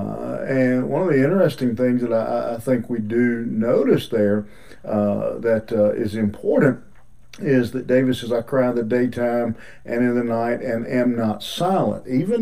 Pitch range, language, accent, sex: 110-130 Hz, English, American, male